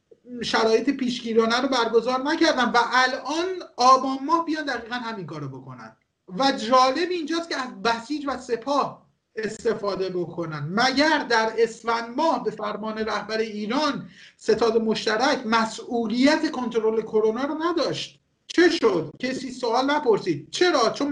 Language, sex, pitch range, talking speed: Persian, male, 215-285 Hz, 130 wpm